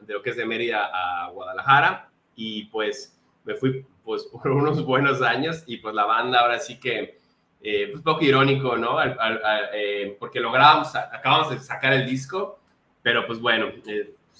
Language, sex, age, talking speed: Spanish, male, 20-39, 190 wpm